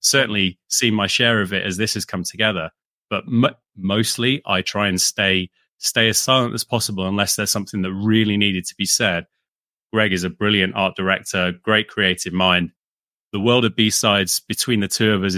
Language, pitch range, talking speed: English, 90-105 Hz, 190 wpm